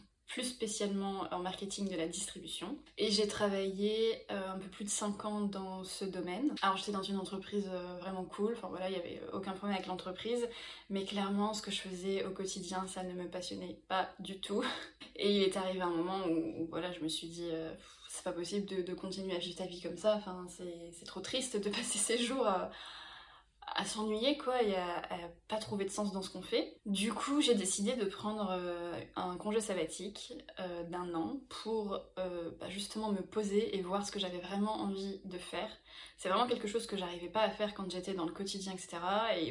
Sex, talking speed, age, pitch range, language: female, 225 wpm, 20-39, 185-210 Hz, French